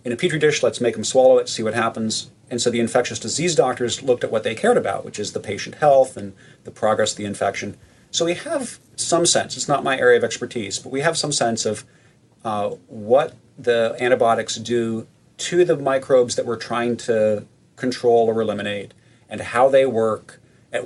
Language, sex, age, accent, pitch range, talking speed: English, male, 40-59, American, 115-145 Hz, 205 wpm